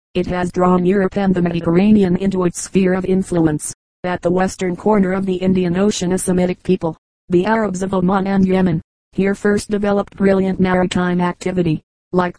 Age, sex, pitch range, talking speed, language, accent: 40-59, female, 175-195 Hz, 175 wpm, English, American